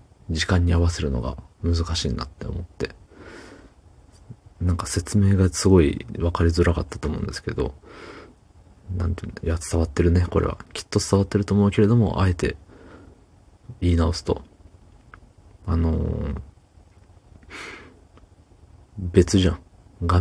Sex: male